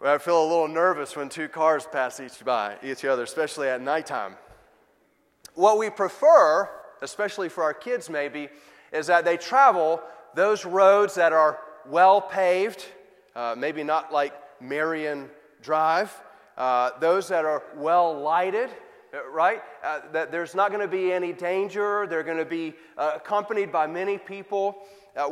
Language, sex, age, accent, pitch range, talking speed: English, male, 30-49, American, 150-190 Hz, 155 wpm